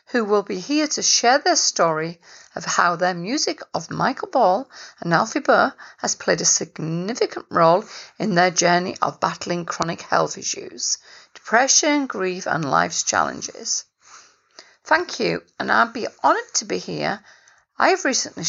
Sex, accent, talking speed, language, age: female, British, 155 wpm, English, 40-59